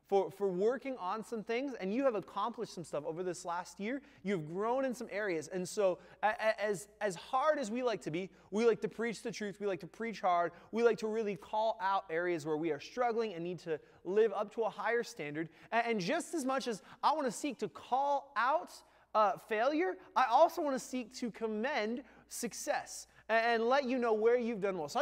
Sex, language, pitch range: male, English, 195-245 Hz